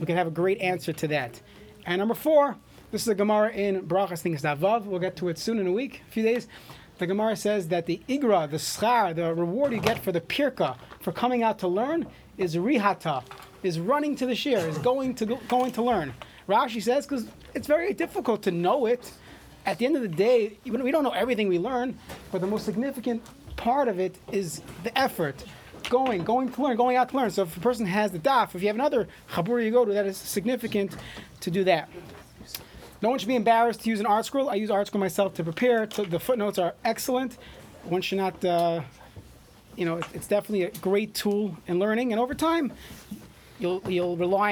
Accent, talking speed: American, 220 wpm